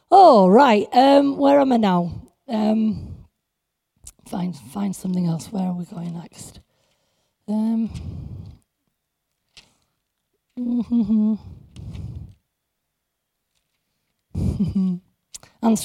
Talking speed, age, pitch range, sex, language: 70 wpm, 30-49, 190-235 Hz, female, English